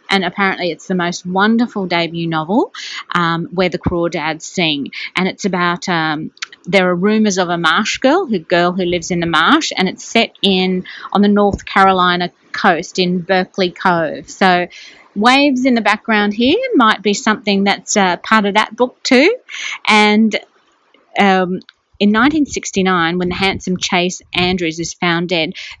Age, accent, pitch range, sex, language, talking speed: 30-49, Australian, 165-195 Hz, female, English, 165 wpm